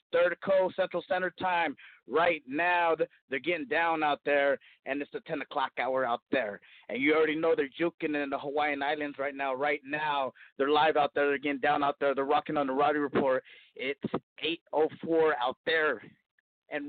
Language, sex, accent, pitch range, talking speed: English, male, American, 145-180 Hz, 190 wpm